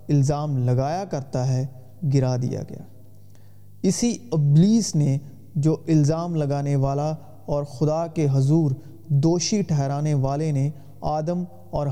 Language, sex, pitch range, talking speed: Urdu, male, 130-165 Hz, 120 wpm